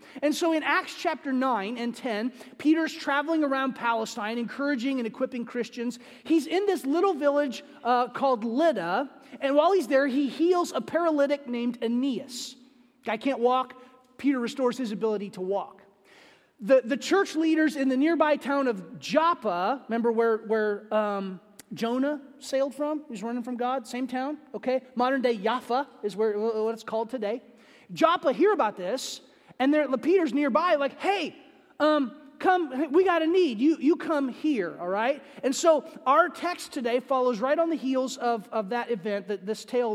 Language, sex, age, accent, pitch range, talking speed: English, male, 30-49, American, 220-290 Hz, 175 wpm